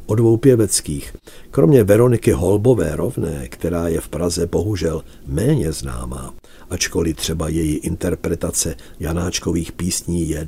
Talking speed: 115 wpm